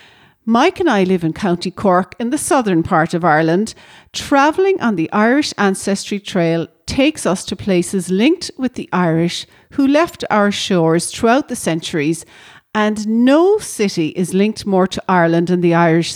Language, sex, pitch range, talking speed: English, female, 180-235 Hz, 165 wpm